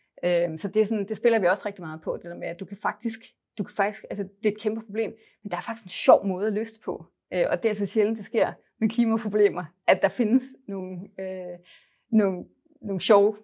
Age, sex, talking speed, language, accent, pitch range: 30-49, female, 200 wpm, Danish, native, 175-215 Hz